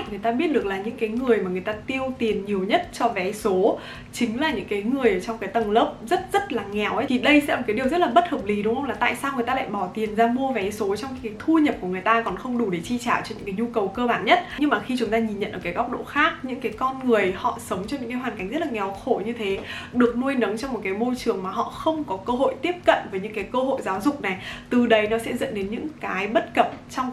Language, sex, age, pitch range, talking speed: Vietnamese, female, 20-39, 205-260 Hz, 320 wpm